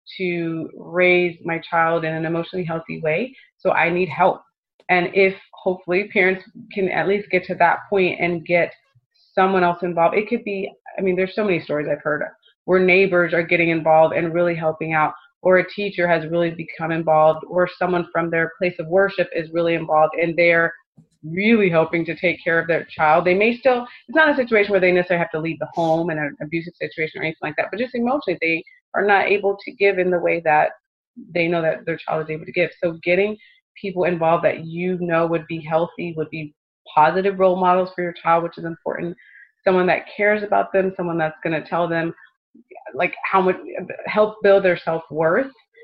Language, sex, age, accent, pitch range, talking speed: English, female, 30-49, American, 165-190 Hz, 210 wpm